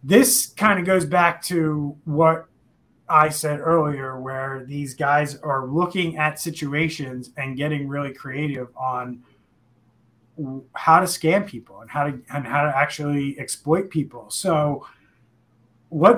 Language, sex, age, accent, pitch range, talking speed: English, male, 30-49, American, 130-155 Hz, 135 wpm